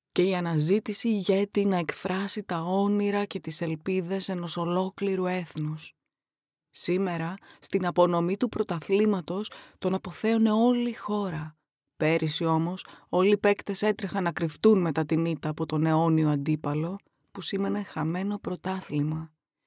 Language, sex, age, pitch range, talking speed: Greek, female, 20-39, 160-195 Hz, 130 wpm